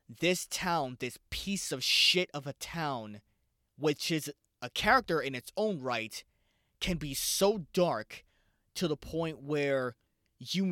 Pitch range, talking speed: 125-170 Hz, 145 wpm